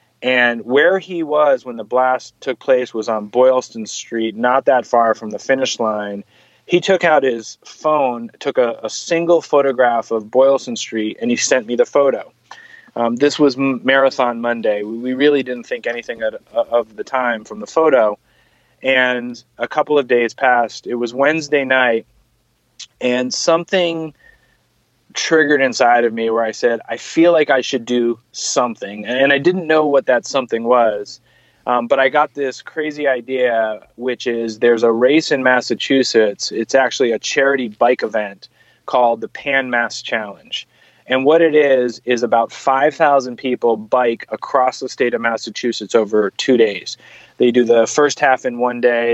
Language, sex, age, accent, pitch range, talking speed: English, male, 20-39, American, 115-135 Hz, 170 wpm